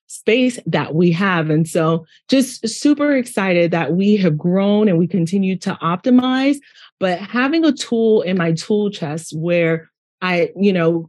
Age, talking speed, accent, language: 30-49, 160 wpm, American, English